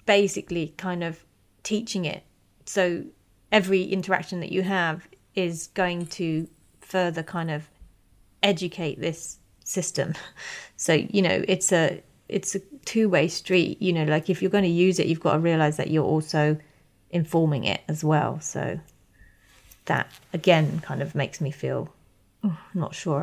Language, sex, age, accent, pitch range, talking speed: English, female, 30-49, British, 165-205 Hz, 155 wpm